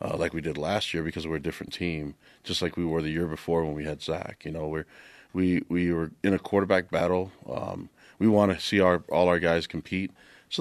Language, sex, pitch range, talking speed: English, male, 75-90 Hz, 245 wpm